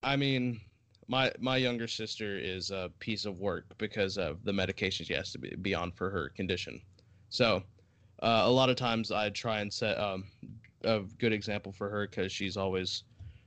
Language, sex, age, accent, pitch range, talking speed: English, male, 20-39, American, 95-110 Hz, 190 wpm